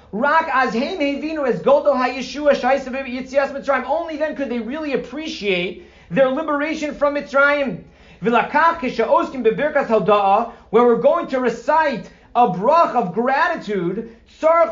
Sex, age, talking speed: male, 40-59, 75 wpm